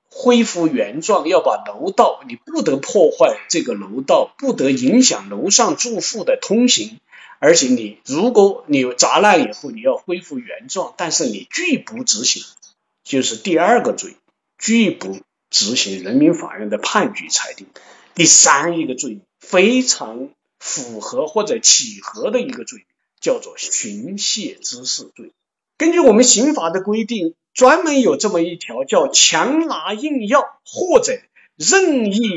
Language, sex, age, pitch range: Chinese, male, 50-69, 205-290 Hz